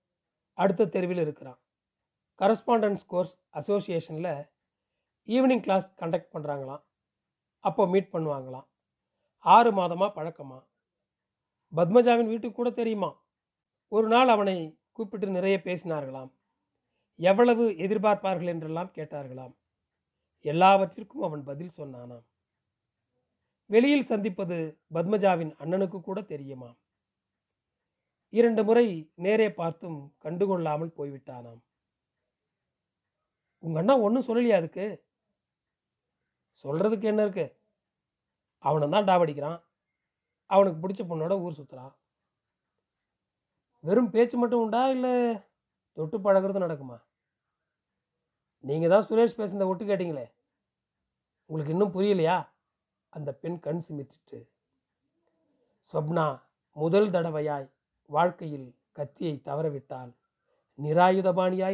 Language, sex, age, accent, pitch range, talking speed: Tamil, male, 40-59, native, 145-205 Hz, 85 wpm